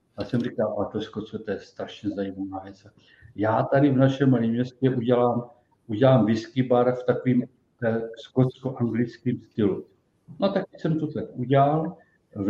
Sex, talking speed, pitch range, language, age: male, 165 wpm, 120-140 Hz, Czech, 50-69